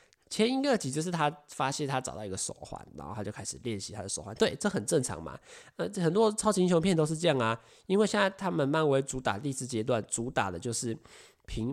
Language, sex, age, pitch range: Chinese, male, 20-39, 105-145 Hz